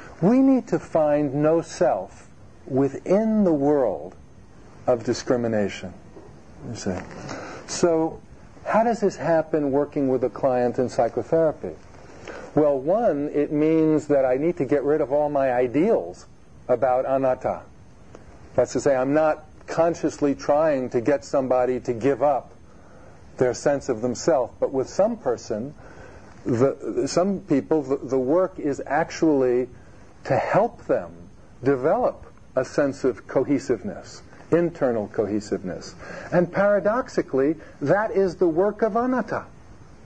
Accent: American